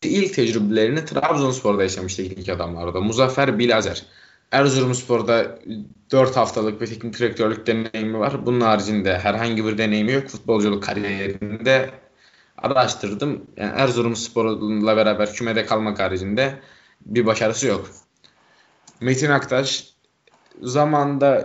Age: 20-39